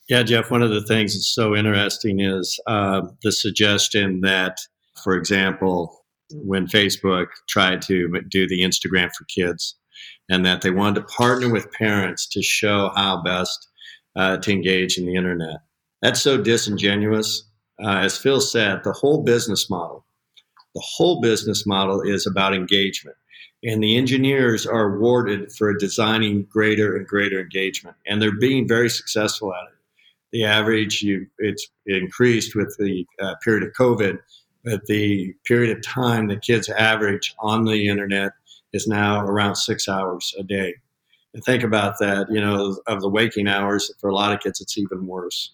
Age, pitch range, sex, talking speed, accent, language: 50-69, 95-110 Hz, male, 165 wpm, American, English